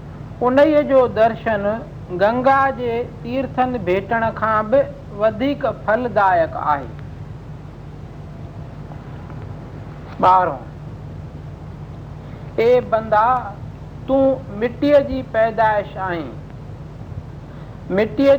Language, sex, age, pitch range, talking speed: Hindi, male, 50-69, 195-260 Hz, 55 wpm